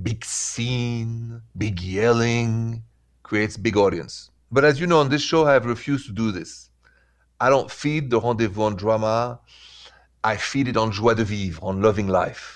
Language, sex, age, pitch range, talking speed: English, male, 40-59, 95-135 Hz, 175 wpm